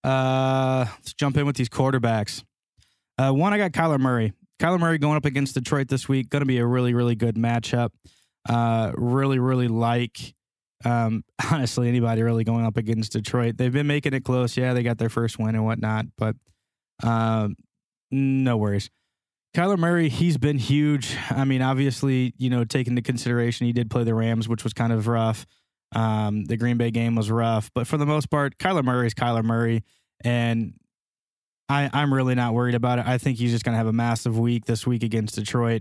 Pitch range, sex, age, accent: 115-135 Hz, male, 20-39, American